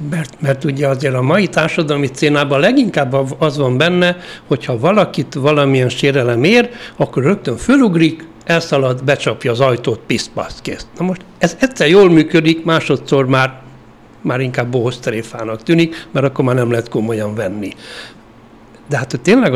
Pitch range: 130-160 Hz